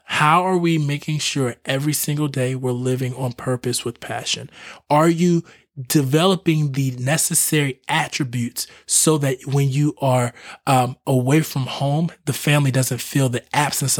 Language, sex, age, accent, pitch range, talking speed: English, male, 20-39, American, 130-150 Hz, 150 wpm